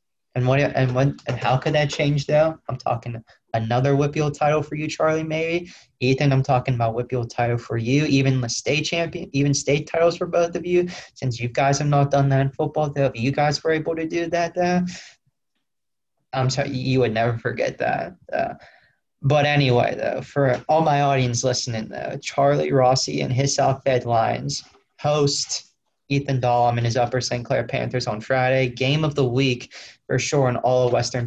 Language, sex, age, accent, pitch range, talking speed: English, male, 20-39, American, 125-145 Hz, 200 wpm